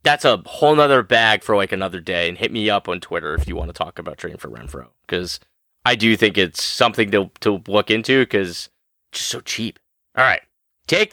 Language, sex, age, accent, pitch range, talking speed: English, male, 30-49, American, 100-130 Hz, 220 wpm